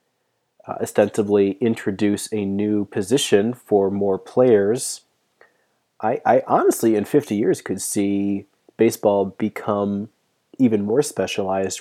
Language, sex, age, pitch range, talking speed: English, male, 30-49, 100-110 Hz, 110 wpm